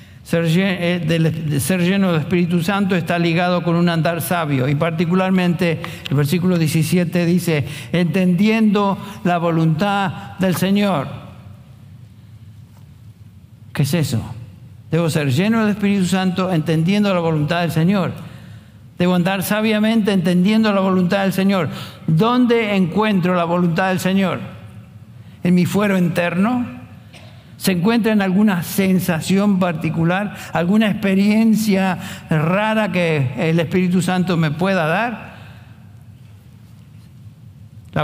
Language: English